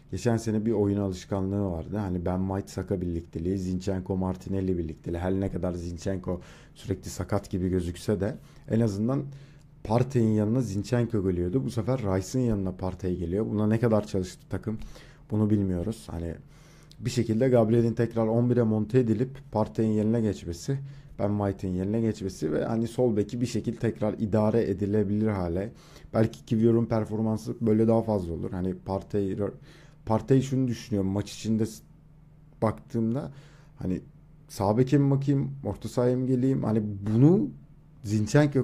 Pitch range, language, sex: 95-125 Hz, Turkish, male